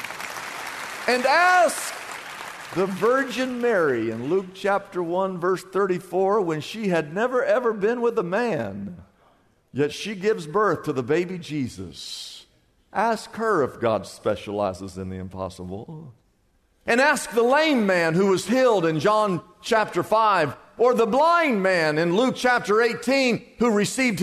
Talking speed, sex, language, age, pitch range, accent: 145 wpm, male, English, 50-69, 135-220 Hz, American